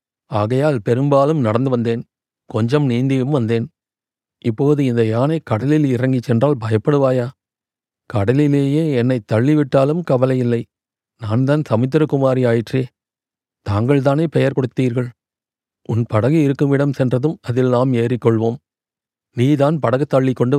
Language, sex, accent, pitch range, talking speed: Tamil, male, native, 120-145 Hz, 105 wpm